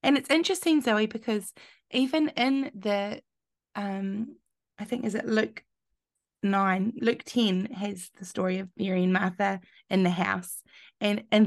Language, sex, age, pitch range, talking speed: English, female, 20-39, 195-245 Hz, 150 wpm